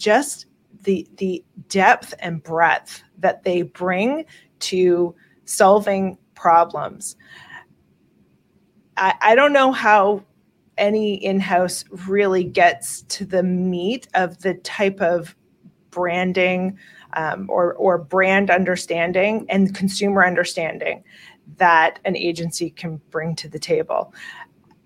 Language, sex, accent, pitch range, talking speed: English, female, American, 175-200 Hz, 110 wpm